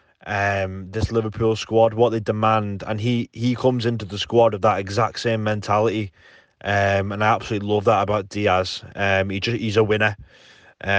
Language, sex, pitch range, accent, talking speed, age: English, male, 105-130 Hz, British, 185 wpm, 20-39